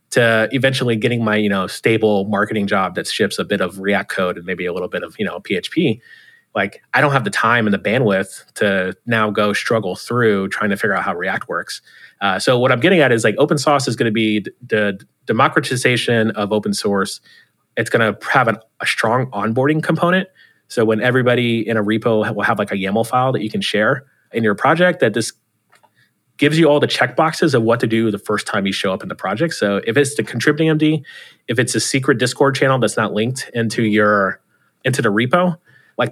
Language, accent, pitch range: English, American, 105-130 Hz